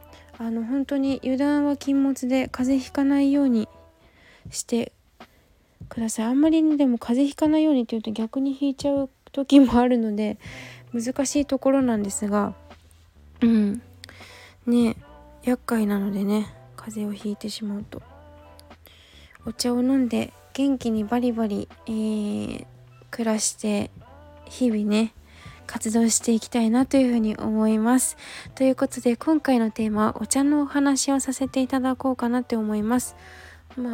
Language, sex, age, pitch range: Japanese, female, 20-39, 215-275 Hz